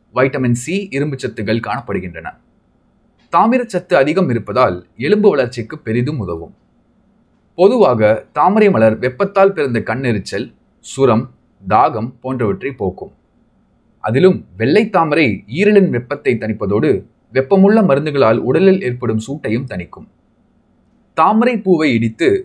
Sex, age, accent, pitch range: male, 30-49, native, 120-190 Hz